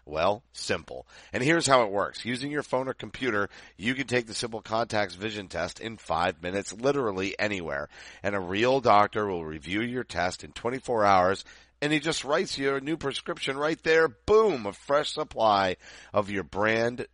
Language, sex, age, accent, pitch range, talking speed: English, male, 40-59, American, 95-125 Hz, 185 wpm